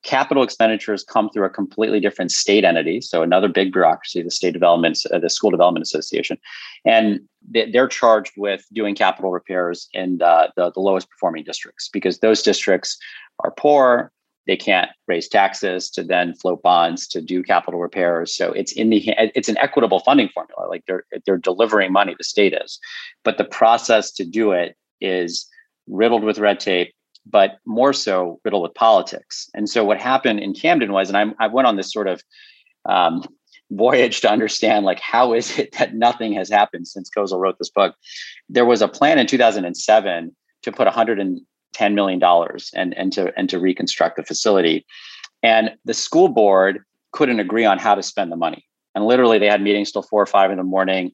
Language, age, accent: English, 40-59, American